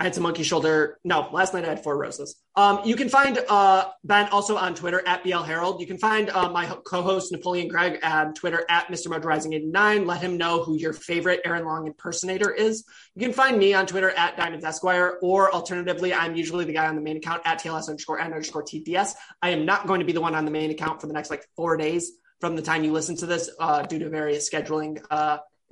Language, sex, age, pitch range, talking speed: English, male, 20-39, 160-190 Hz, 245 wpm